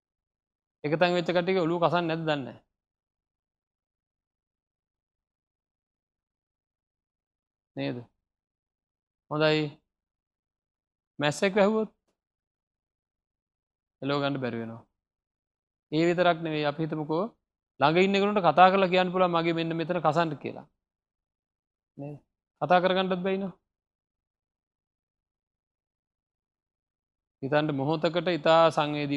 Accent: Indian